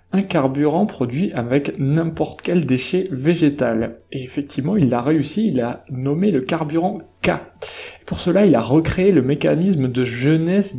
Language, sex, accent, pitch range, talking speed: French, male, French, 130-170 Hz, 160 wpm